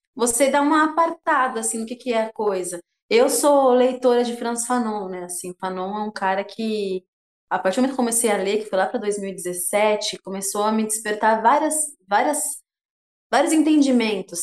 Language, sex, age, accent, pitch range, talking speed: Portuguese, female, 20-39, Brazilian, 200-250 Hz, 185 wpm